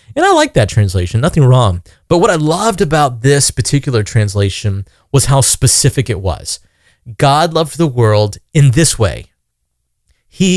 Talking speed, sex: 160 wpm, male